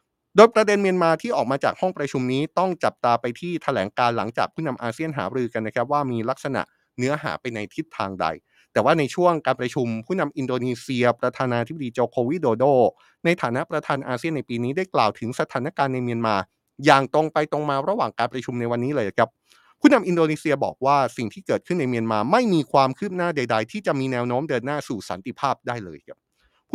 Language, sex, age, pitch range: Thai, male, 20-39, 125-165 Hz